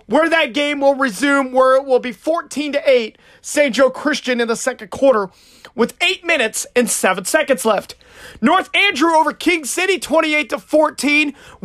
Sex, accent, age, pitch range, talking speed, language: male, American, 30-49, 270-330 Hz, 155 wpm, English